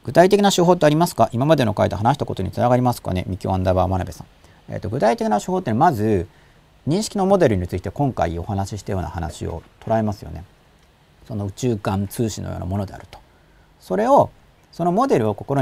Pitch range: 95-150 Hz